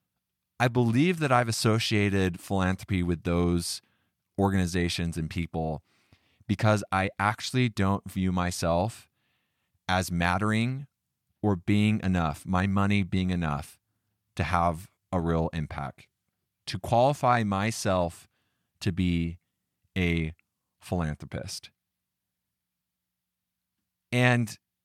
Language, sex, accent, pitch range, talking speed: English, male, American, 90-110 Hz, 95 wpm